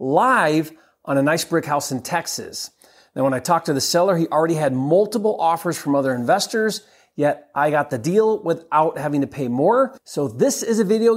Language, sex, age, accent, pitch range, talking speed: English, male, 30-49, American, 140-190 Hz, 205 wpm